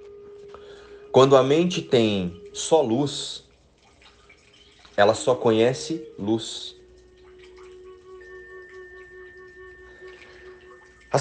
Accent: Brazilian